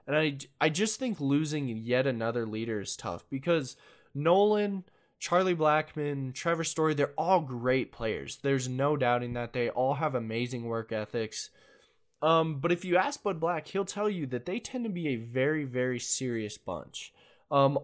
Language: English